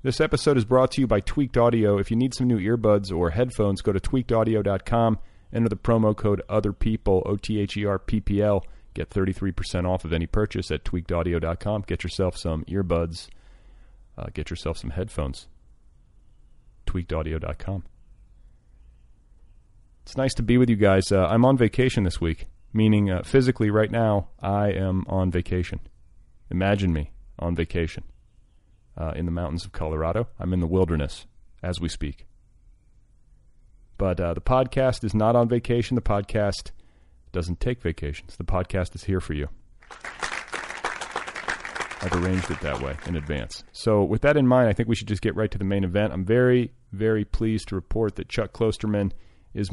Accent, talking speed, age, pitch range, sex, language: American, 165 wpm, 30-49, 85-110 Hz, male, English